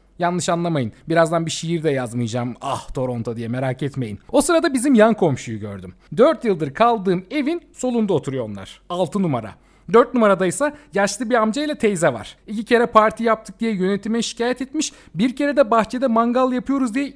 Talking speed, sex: 170 wpm, male